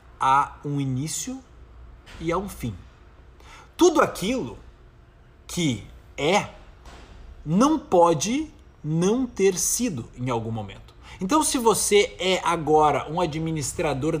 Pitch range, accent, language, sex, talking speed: 145-205 Hz, Brazilian, Portuguese, male, 110 wpm